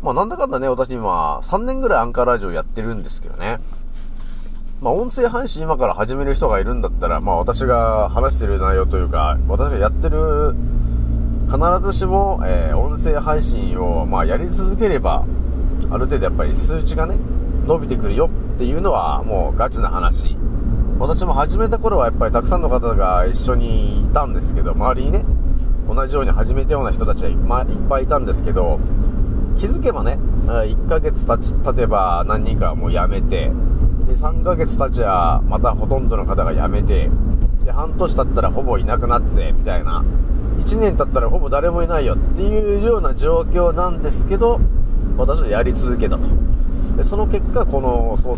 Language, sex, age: Japanese, male, 30-49